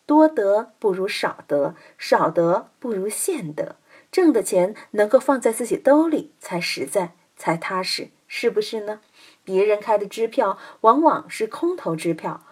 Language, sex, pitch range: Chinese, female, 185-295 Hz